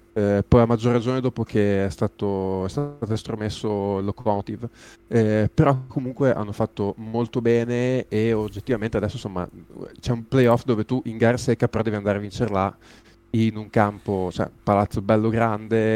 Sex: male